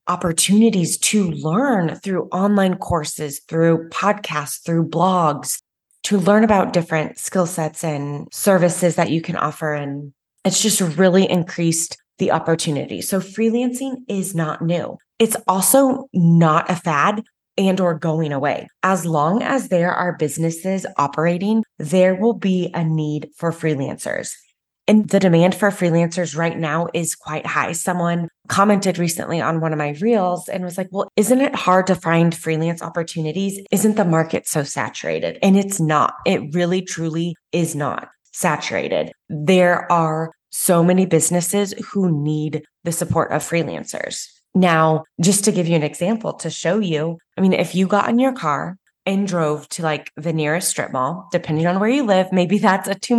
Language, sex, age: English, female, 20-39